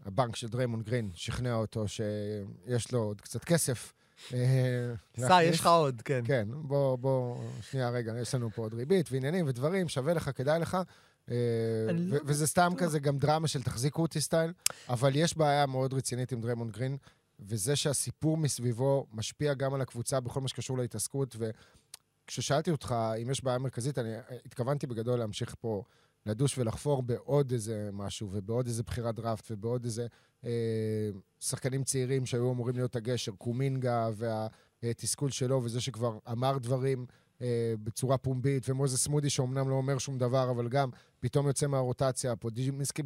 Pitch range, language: 115-140 Hz, Hebrew